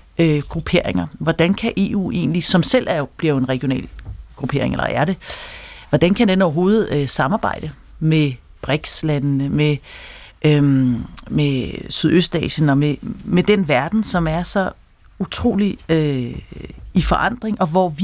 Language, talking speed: Danish, 150 wpm